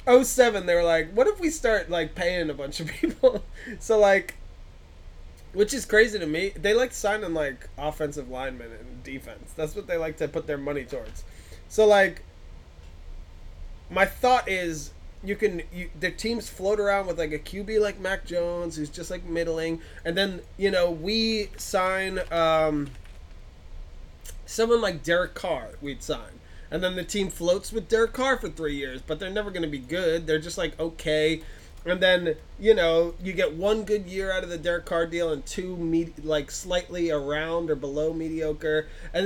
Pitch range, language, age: 150-195 Hz, English, 20-39